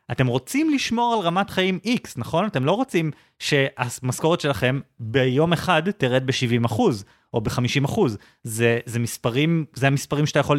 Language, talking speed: Hebrew, 145 wpm